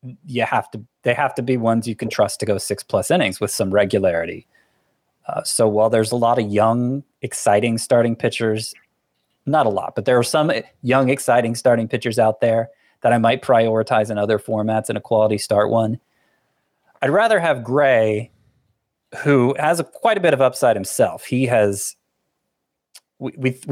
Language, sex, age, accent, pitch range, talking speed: English, male, 30-49, American, 110-130 Hz, 180 wpm